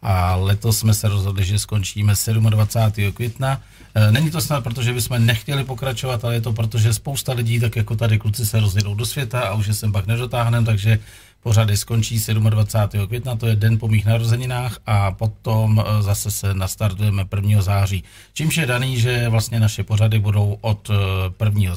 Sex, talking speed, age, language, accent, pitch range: male, 175 wpm, 40-59, Czech, native, 105-120 Hz